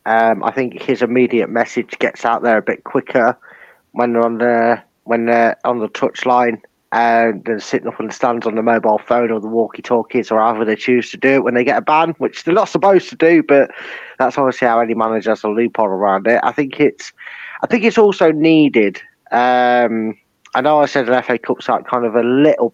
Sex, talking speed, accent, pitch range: male, 230 wpm, British, 115-140 Hz